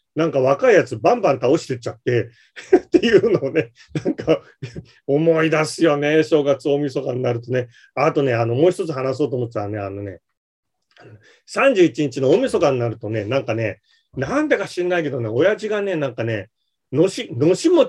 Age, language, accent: 40-59, Japanese, native